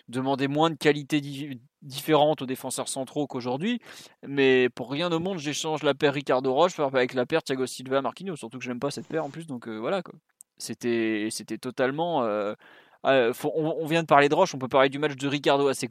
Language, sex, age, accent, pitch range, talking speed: French, male, 20-39, French, 130-165 Hz, 210 wpm